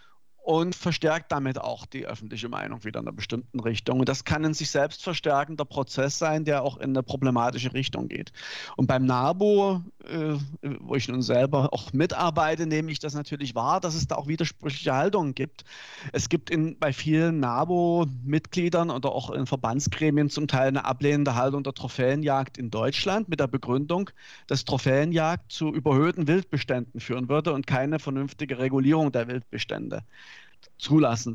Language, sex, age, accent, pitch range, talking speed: German, male, 40-59, German, 130-160 Hz, 165 wpm